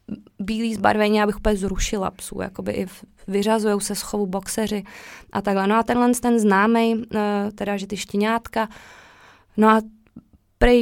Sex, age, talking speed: female, 20-39, 145 wpm